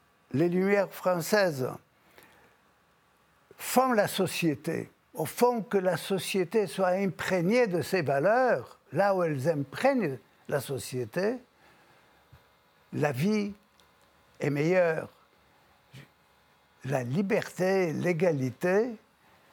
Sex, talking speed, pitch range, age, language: male, 90 wpm, 140-190 Hz, 60-79, French